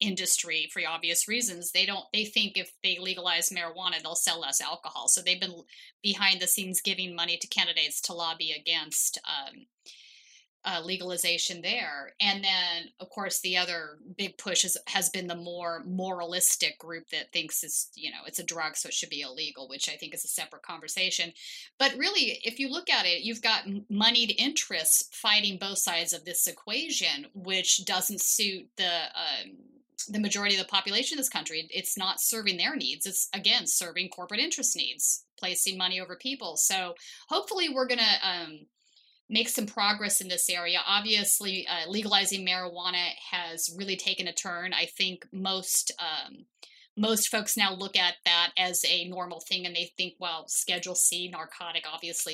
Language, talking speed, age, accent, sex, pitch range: English, 175 wpm, 30-49, American, female, 175-215 Hz